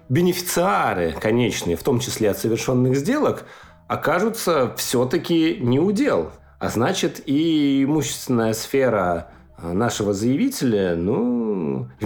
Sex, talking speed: male, 105 wpm